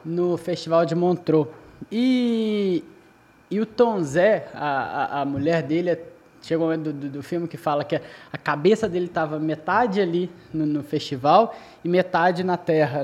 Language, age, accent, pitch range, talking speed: Portuguese, 20-39, Brazilian, 155-195 Hz, 175 wpm